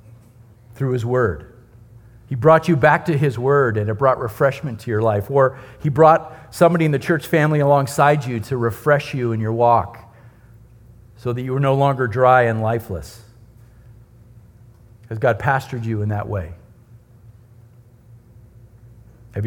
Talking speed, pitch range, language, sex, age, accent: 155 wpm, 115-150 Hz, English, male, 50-69, American